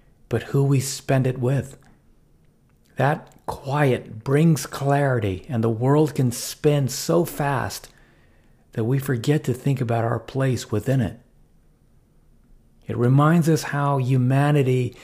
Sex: male